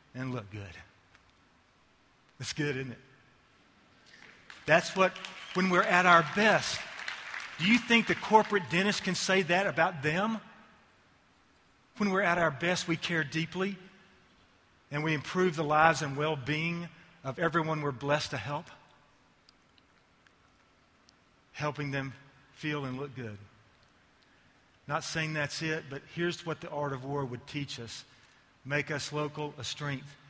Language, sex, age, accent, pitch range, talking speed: English, male, 40-59, American, 125-160 Hz, 140 wpm